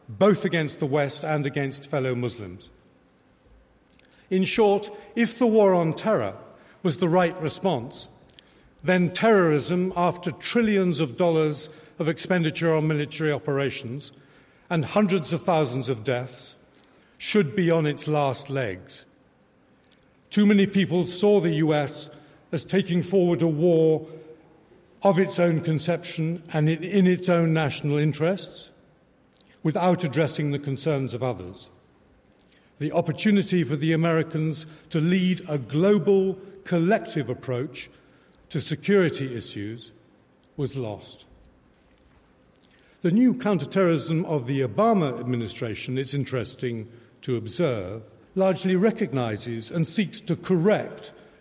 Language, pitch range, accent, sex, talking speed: English, 135-180 Hz, British, male, 120 wpm